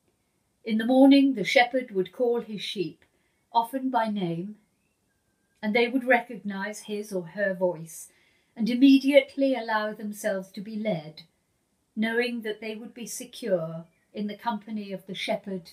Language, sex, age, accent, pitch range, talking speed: English, female, 50-69, British, 185-240 Hz, 150 wpm